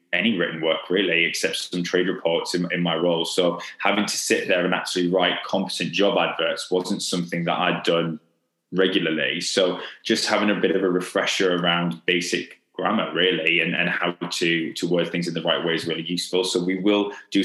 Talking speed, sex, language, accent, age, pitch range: 205 wpm, male, English, British, 20-39, 85-105 Hz